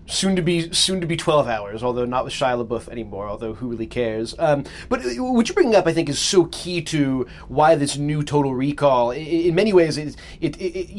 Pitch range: 125-165 Hz